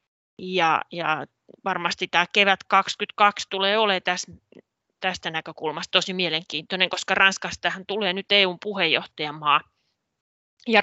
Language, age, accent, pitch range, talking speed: Finnish, 30-49, native, 170-200 Hz, 110 wpm